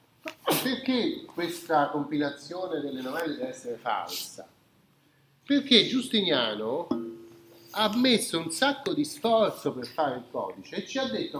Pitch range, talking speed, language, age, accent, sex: 155-255 Hz, 125 wpm, Italian, 40-59, native, male